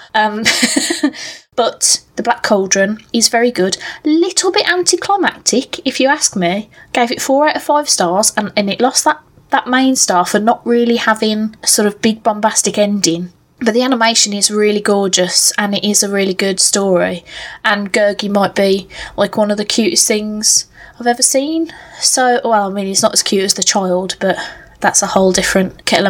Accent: British